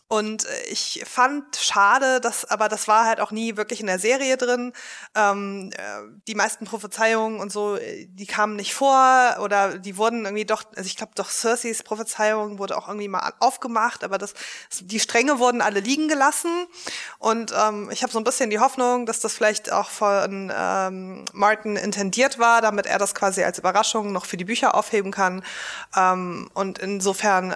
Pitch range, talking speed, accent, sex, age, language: 190-225 Hz, 180 wpm, German, female, 20-39, German